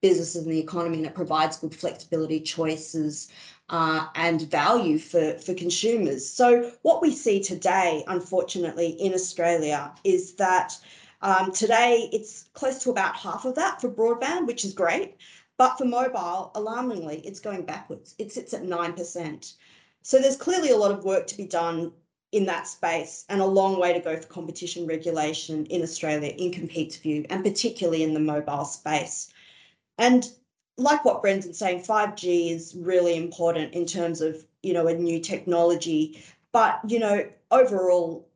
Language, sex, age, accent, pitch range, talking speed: English, female, 30-49, Australian, 160-195 Hz, 165 wpm